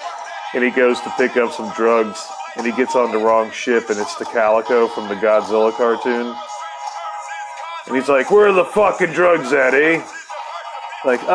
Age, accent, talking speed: 30-49, American, 180 wpm